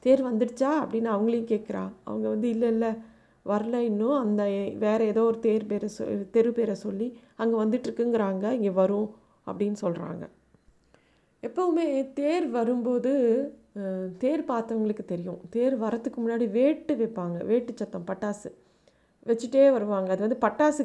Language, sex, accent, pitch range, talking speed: Tamil, female, native, 205-245 Hz, 130 wpm